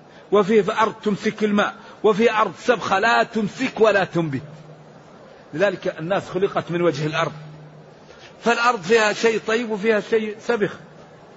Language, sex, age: Arabic, male, 50-69